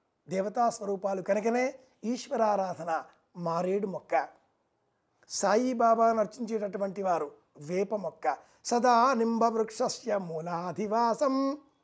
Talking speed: 70 wpm